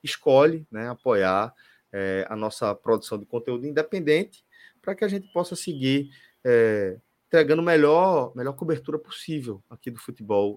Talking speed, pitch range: 130 wpm, 110-150 Hz